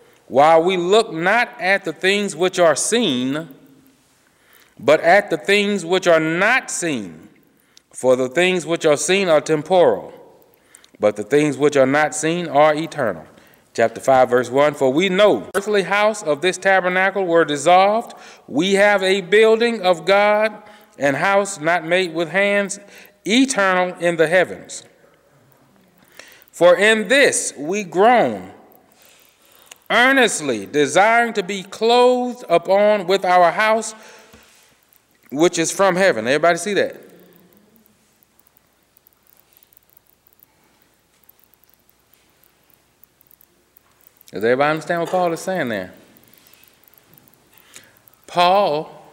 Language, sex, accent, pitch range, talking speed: English, male, American, 150-200 Hz, 115 wpm